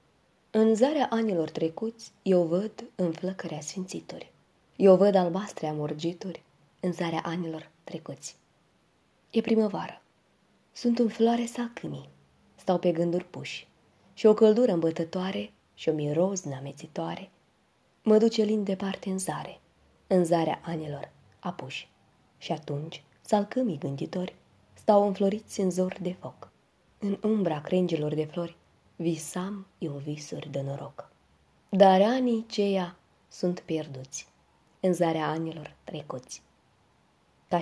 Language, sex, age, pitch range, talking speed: Romanian, female, 20-39, 155-200 Hz, 120 wpm